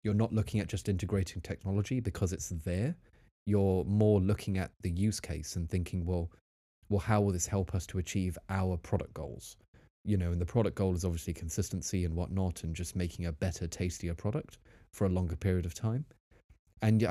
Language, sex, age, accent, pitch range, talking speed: English, male, 30-49, British, 85-105 Hz, 195 wpm